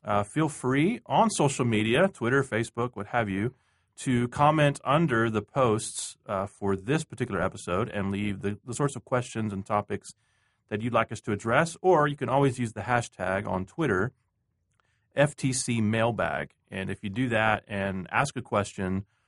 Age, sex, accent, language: 30-49, male, American, English